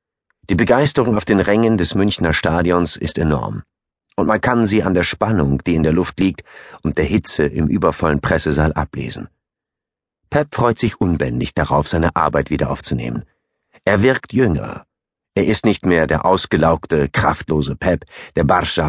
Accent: German